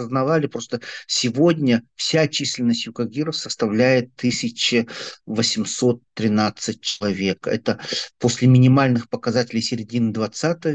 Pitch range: 120-145 Hz